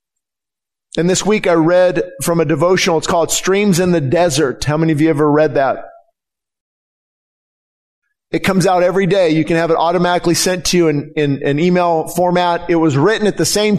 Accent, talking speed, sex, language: American, 190 wpm, male, English